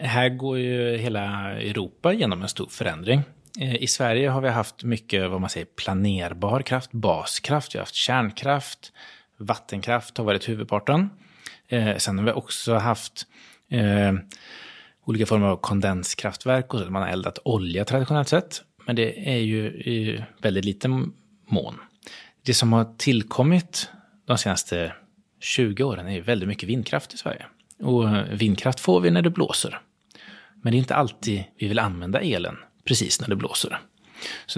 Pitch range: 105-135 Hz